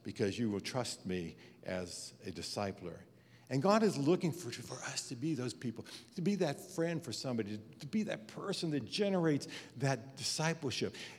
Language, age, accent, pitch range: English, 60-79, American, 130-205 Hz